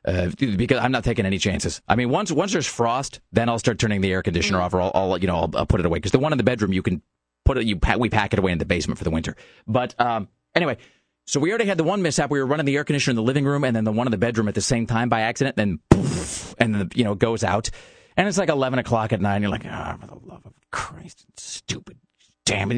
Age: 30-49